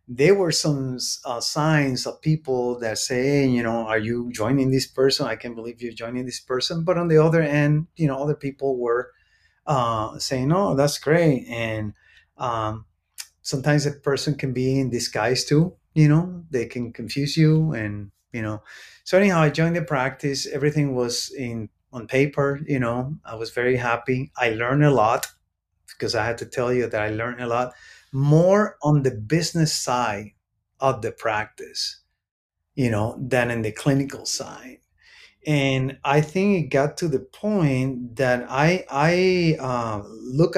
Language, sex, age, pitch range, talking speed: English, male, 30-49, 120-150 Hz, 175 wpm